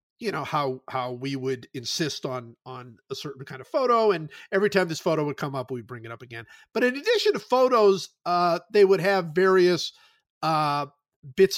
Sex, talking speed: male, 200 wpm